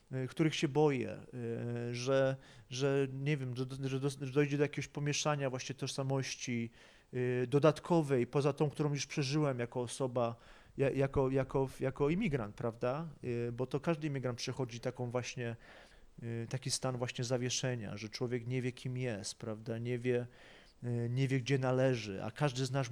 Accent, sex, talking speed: native, male, 155 wpm